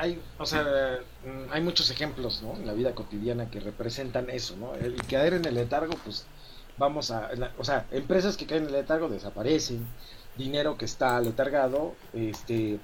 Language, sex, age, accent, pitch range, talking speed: Spanish, male, 50-69, Mexican, 115-145 Hz, 170 wpm